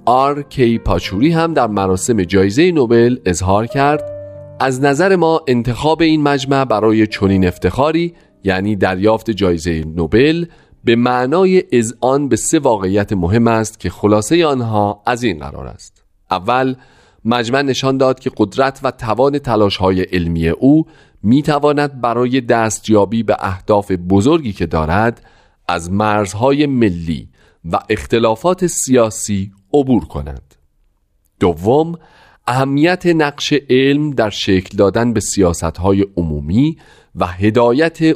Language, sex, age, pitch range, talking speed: Persian, male, 40-59, 95-140 Hz, 120 wpm